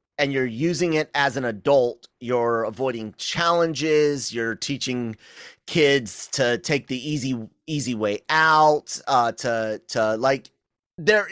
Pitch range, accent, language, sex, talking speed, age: 120-165 Hz, American, English, male, 135 wpm, 30-49